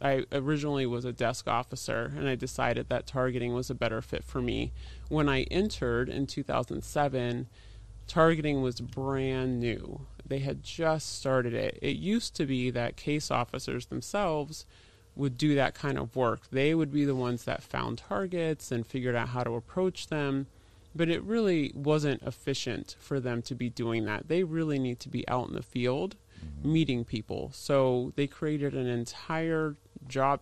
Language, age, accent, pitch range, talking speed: English, 30-49, American, 120-145 Hz, 175 wpm